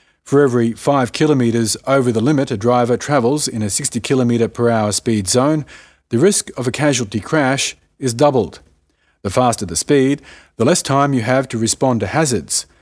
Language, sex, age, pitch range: English, male, 40-59, 115-145 Hz